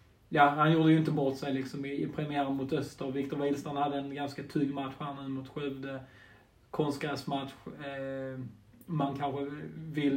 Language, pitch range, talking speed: Swedish, 135-150 Hz, 170 wpm